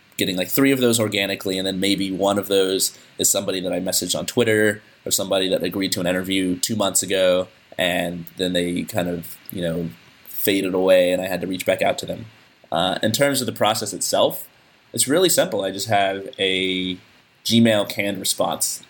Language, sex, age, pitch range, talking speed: English, male, 20-39, 90-105 Hz, 205 wpm